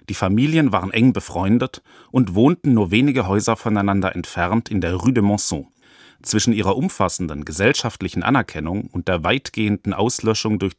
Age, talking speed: 40-59, 150 wpm